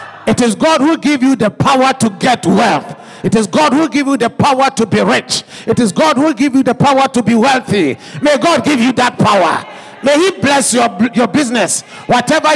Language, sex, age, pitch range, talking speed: English, male, 50-69, 215-255 Hz, 220 wpm